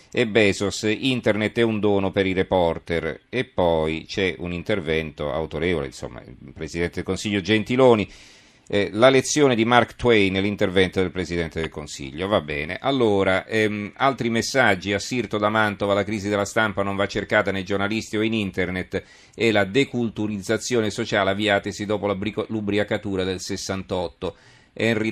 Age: 40-59